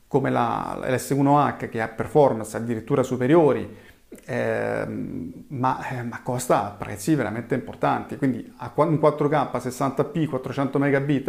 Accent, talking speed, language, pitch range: native, 120 wpm, Italian, 125-145 Hz